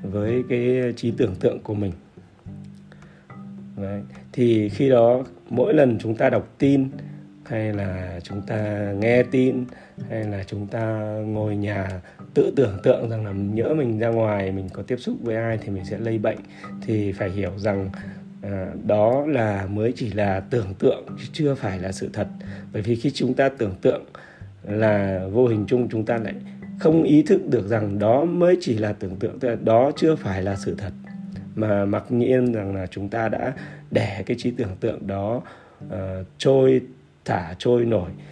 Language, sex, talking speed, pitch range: Vietnamese, male, 185 wpm, 100-120 Hz